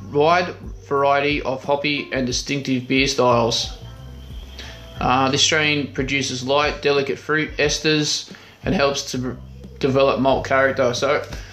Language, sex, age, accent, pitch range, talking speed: English, male, 20-39, Australian, 125-145 Hz, 120 wpm